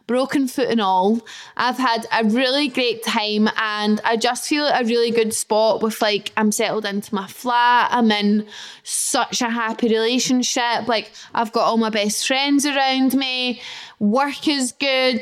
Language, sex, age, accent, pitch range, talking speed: English, female, 10-29, British, 220-260 Hz, 175 wpm